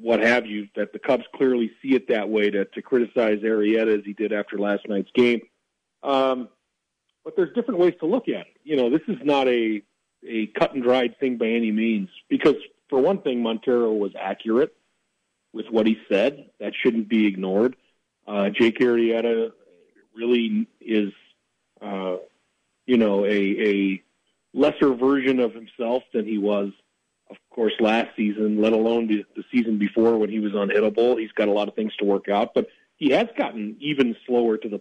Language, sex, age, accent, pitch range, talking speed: English, male, 40-59, American, 105-125 Hz, 185 wpm